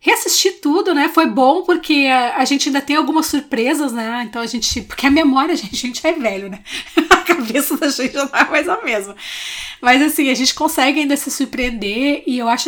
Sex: female